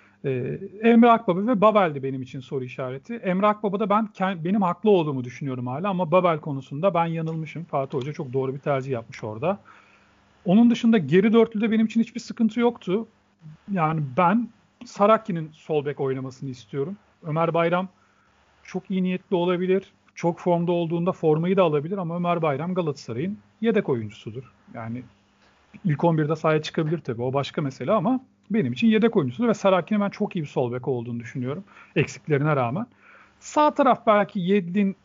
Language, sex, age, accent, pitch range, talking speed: Turkish, male, 40-59, native, 145-205 Hz, 165 wpm